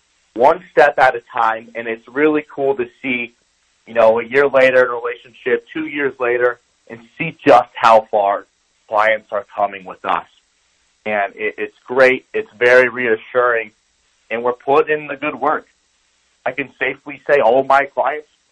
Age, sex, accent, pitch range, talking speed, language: 30-49, male, American, 110-160 Hz, 170 wpm, English